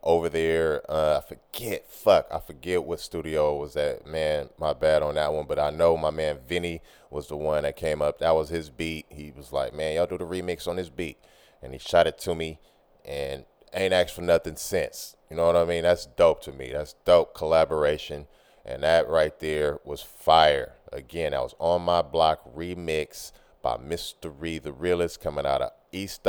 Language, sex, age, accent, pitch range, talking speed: English, male, 30-49, American, 75-85 Hz, 205 wpm